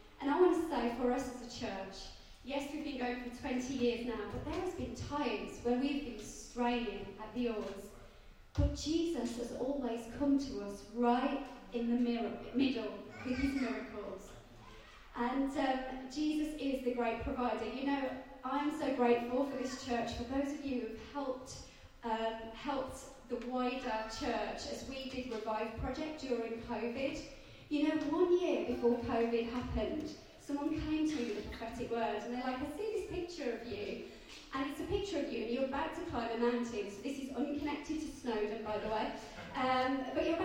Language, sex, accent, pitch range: English, female, British, 235-290 Hz